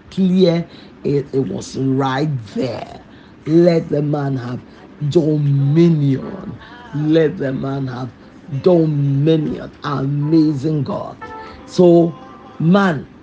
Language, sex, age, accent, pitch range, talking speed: English, male, 50-69, Nigerian, 145-190 Hz, 90 wpm